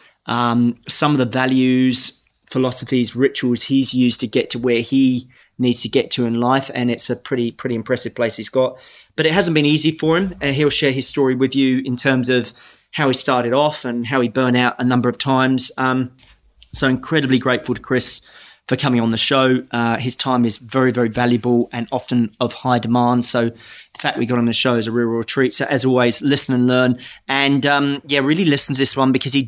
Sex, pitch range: male, 120-130 Hz